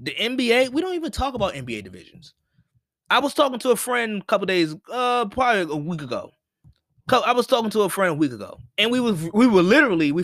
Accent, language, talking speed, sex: American, English, 225 wpm, male